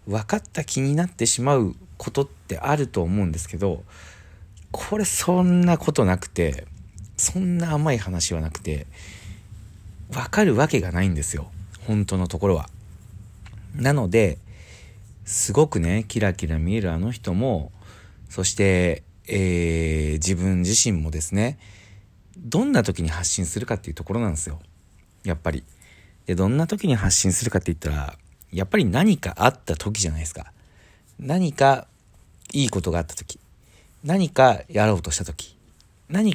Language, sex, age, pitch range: Japanese, male, 40-59, 85-115 Hz